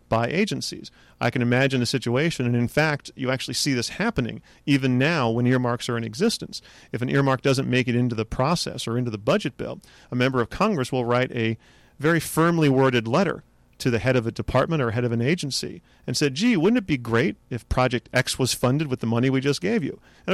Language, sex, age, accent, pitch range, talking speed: English, male, 40-59, American, 120-145 Hz, 230 wpm